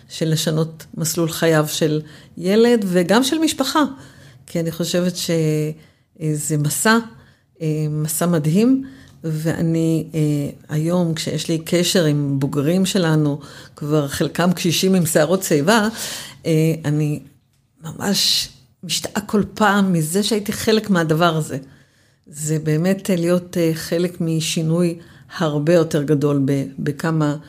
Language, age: Hebrew, 50-69